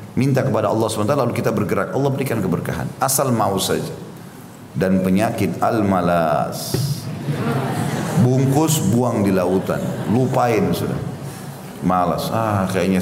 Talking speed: 120 wpm